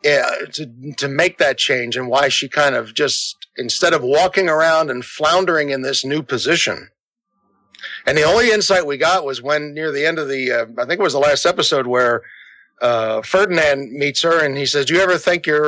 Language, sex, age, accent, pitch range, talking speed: English, male, 50-69, American, 135-190 Hz, 215 wpm